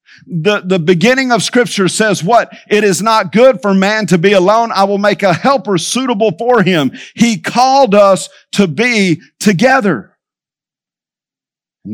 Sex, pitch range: male, 155-210 Hz